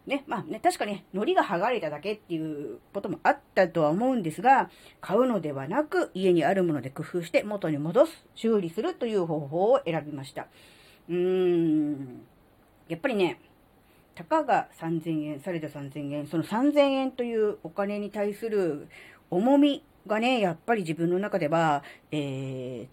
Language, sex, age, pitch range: Japanese, female, 40-59, 160-255 Hz